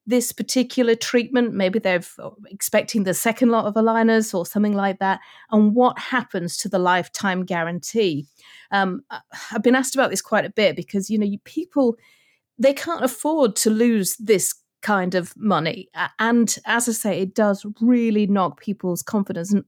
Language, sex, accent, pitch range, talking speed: English, female, British, 185-225 Hz, 170 wpm